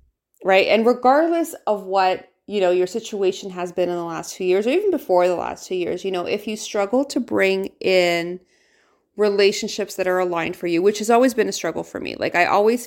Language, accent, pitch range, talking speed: English, American, 180-220 Hz, 225 wpm